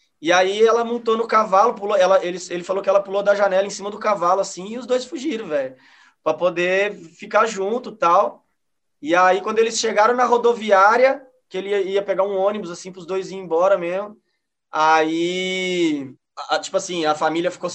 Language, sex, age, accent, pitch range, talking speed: Portuguese, male, 20-39, Brazilian, 160-205 Hz, 205 wpm